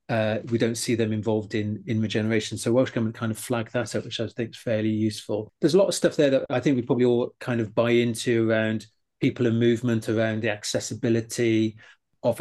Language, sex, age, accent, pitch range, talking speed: English, male, 40-59, British, 110-125 Hz, 225 wpm